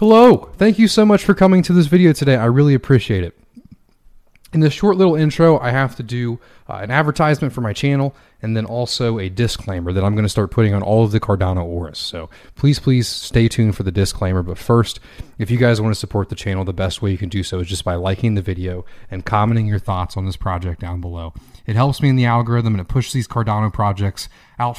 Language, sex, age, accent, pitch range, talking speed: English, male, 30-49, American, 100-145 Hz, 235 wpm